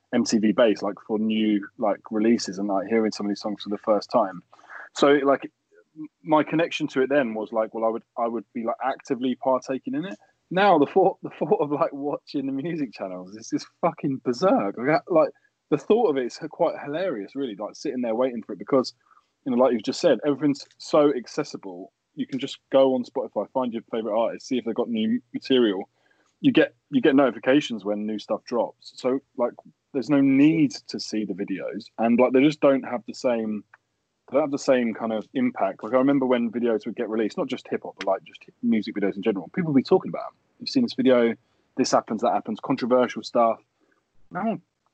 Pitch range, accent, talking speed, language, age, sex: 110-150 Hz, British, 220 wpm, English, 20-39, male